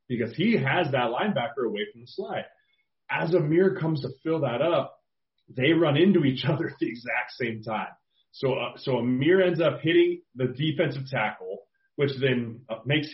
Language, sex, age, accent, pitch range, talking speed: English, male, 30-49, American, 120-150 Hz, 180 wpm